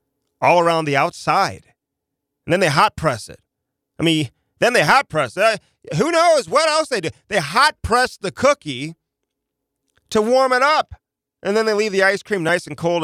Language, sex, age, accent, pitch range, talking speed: English, male, 30-49, American, 125-160 Hz, 180 wpm